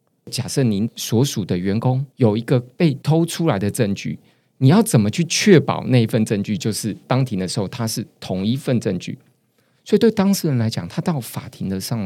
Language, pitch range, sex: Chinese, 115-160 Hz, male